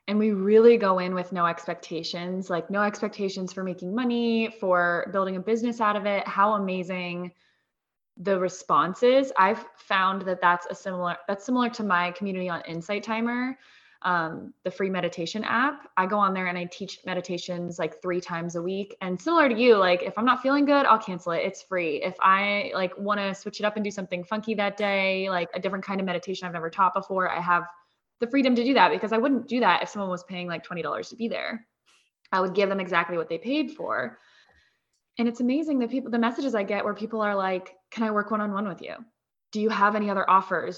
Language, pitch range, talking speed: English, 180-220 Hz, 225 wpm